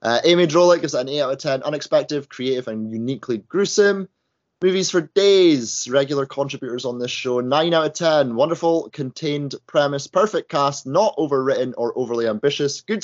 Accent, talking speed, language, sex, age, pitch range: British, 175 wpm, English, male, 20-39, 120-165 Hz